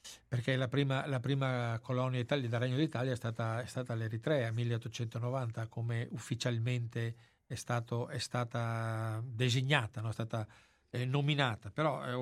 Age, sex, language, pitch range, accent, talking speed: 60-79, male, Italian, 120-140 Hz, native, 145 wpm